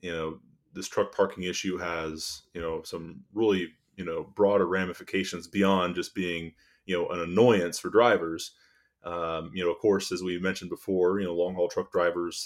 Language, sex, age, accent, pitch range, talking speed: English, male, 30-49, American, 85-110 Hz, 190 wpm